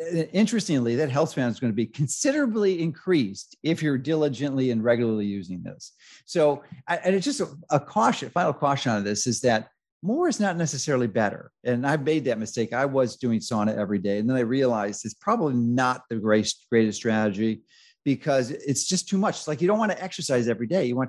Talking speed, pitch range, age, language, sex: 205 wpm, 115-150 Hz, 40-59, English, male